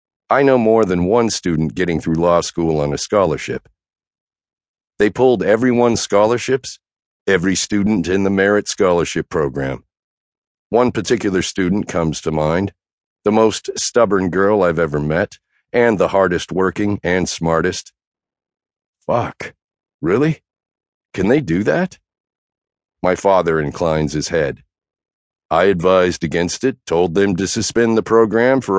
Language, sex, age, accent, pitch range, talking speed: English, male, 50-69, American, 85-110 Hz, 135 wpm